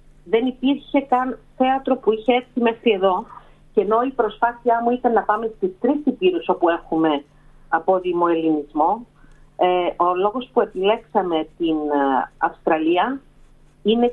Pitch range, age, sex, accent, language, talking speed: 175-220 Hz, 40-59, female, native, Greek, 130 wpm